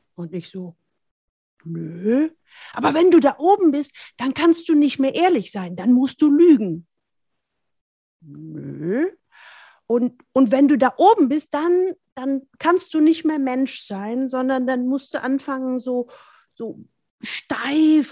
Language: German